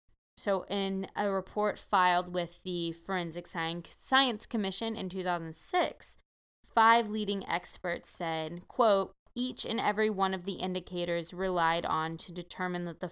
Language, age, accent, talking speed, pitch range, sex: English, 20-39, American, 135 wpm, 170-215 Hz, female